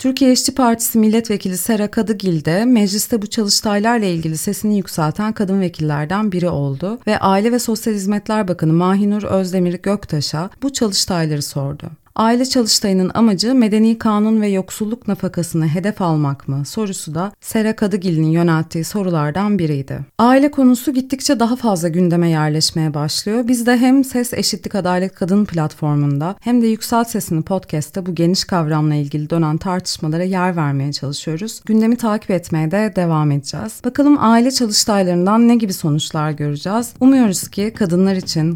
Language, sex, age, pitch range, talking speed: Turkish, female, 30-49, 160-220 Hz, 145 wpm